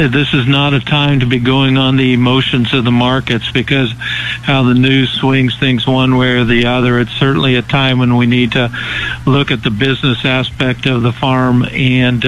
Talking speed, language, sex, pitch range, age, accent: 205 wpm, English, male, 125-140 Hz, 60-79, American